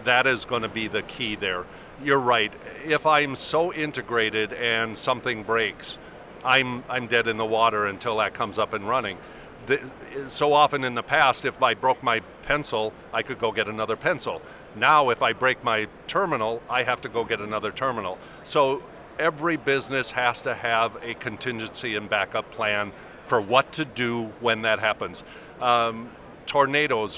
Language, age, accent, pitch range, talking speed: English, 50-69, American, 110-130 Hz, 170 wpm